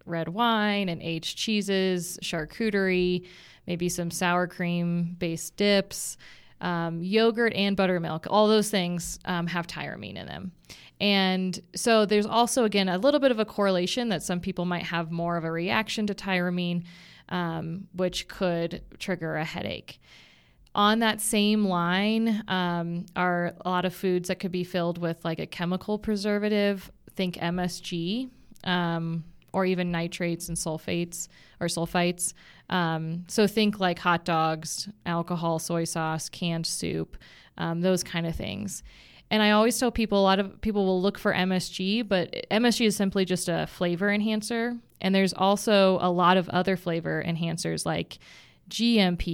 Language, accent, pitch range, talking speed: English, American, 170-205 Hz, 155 wpm